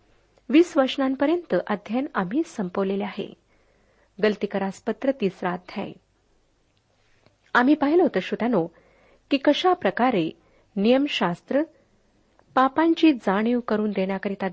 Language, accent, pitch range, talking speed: Marathi, native, 195-275 Hz, 85 wpm